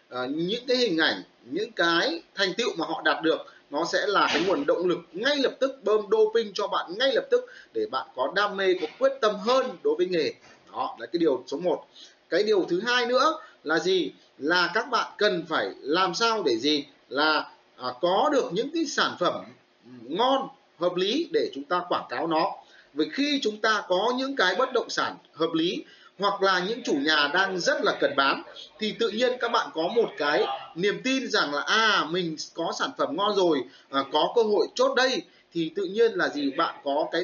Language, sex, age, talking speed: Vietnamese, male, 30-49, 220 wpm